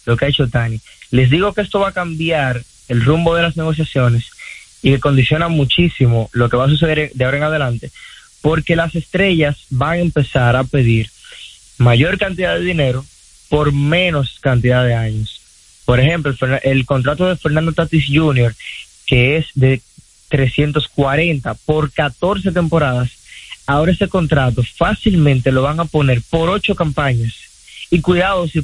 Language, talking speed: Spanish, 160 wpm